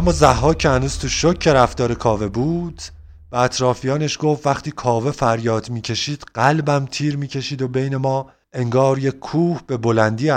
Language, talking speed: Persian, 150 wpm